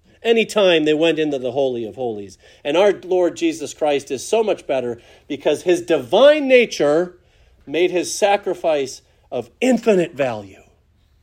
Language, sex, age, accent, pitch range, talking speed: English, male, 40-59, American, 130-205 Hz, 150 wpm